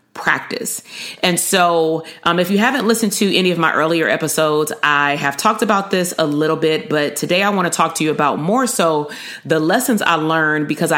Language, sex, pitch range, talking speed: English, female, 150-175 Hz, 210 wpm